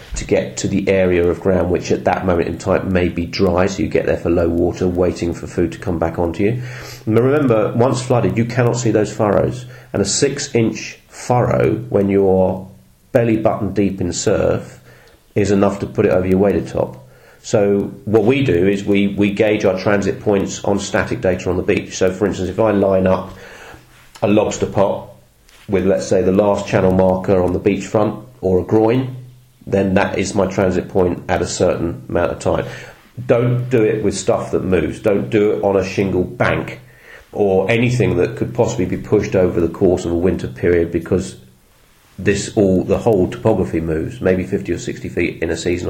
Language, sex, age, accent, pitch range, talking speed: English, male, 40-59, British, 90-110 Hz, 205 wpm